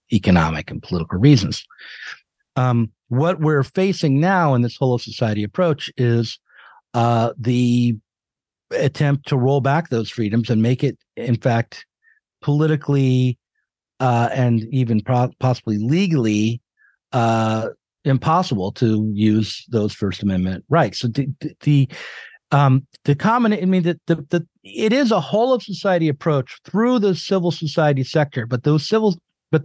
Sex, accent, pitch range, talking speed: male, American, 105-155 Hz, 140 wpm